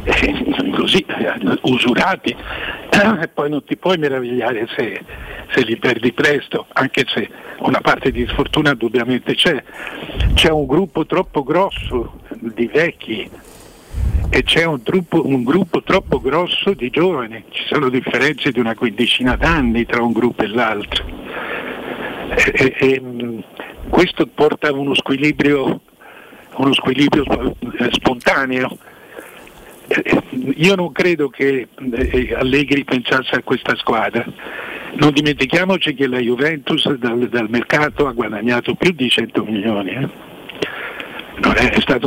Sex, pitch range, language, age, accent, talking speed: male, 120-150 Hz, Italian, 60-79, native, 130 wpm